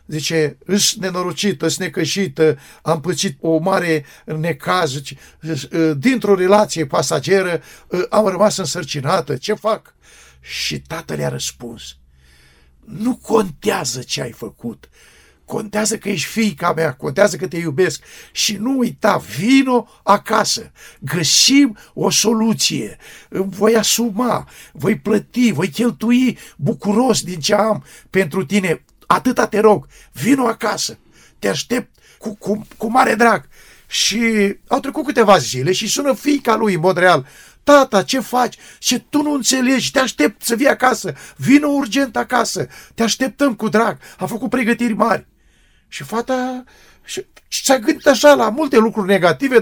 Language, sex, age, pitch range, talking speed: Romanian, male, 60-79, 180-235 Hz, 140 wpm